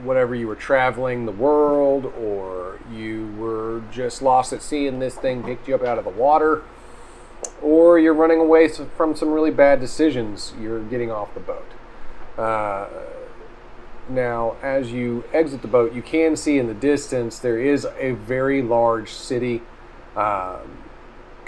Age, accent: 40-59, American